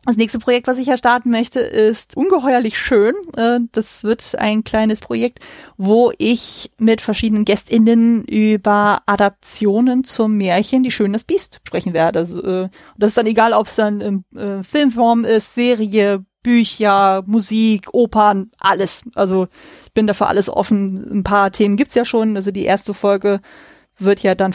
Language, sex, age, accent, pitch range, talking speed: German, female, 30-49, German, 185-225 Hz, 160 wpm